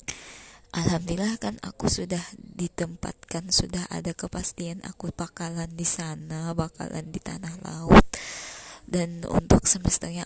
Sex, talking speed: female, 110 wpm